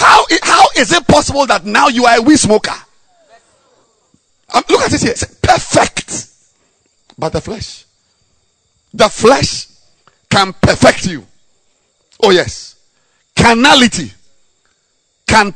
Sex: male